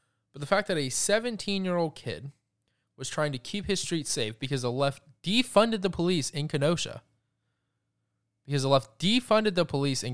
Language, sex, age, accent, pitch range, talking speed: English, male, 20-39, American, 115-155 Hz, 170 wpm